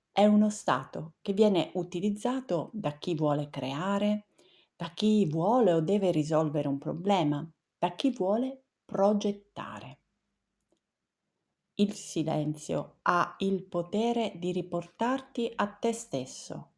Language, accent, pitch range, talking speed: Italian, native, 160-210 Hz, 115 wpm